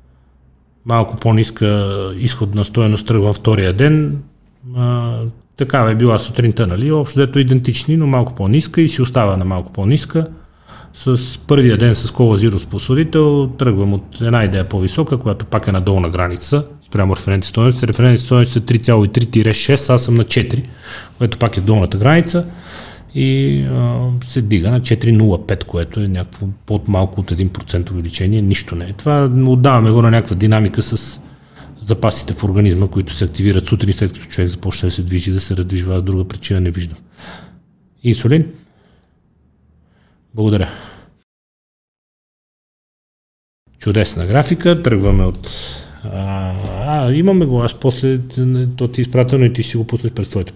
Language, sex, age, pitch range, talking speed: Bulgarian, male, 30-49, 95-125 Hz, 150 wpm